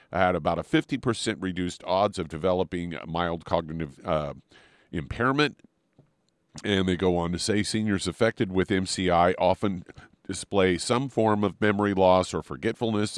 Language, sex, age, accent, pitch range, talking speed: English, male, 50-69, American, 85-110 Hz, 140 wpm